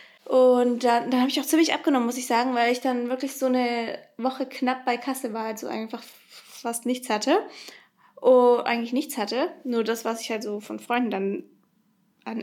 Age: 20-39